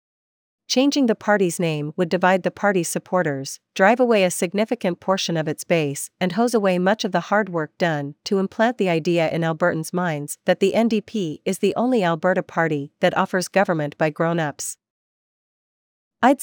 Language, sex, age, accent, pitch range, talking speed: English, female, 40-59, American, 165-200 Hz, 170 wpm